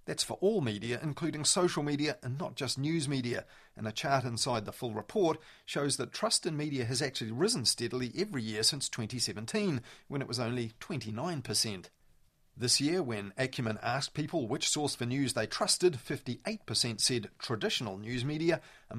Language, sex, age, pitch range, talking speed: English, male, 40-59, 115-150 Hz, 175 wpm